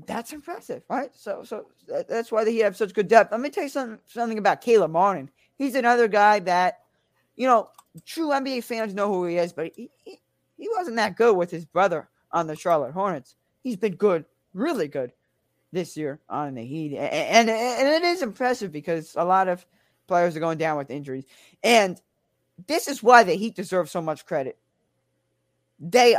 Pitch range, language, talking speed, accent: 160-230 Hz, English, 190 wpm, American